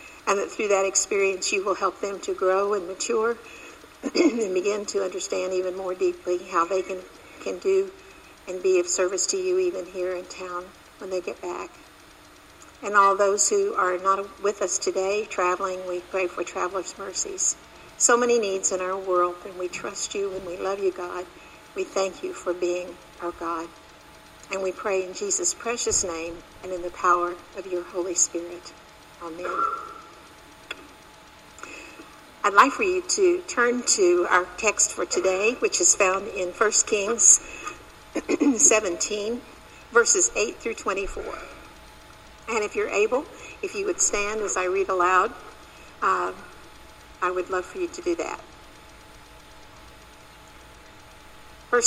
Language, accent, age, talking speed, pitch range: English, American, 60-79, 155 wpm, 180-240 Hz